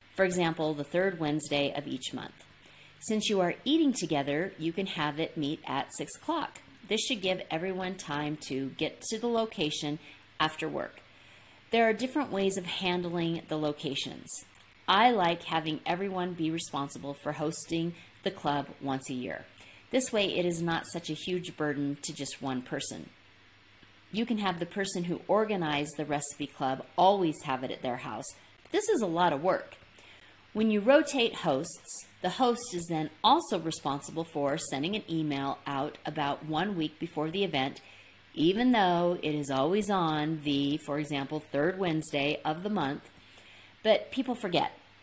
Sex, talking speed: female, 170 wpm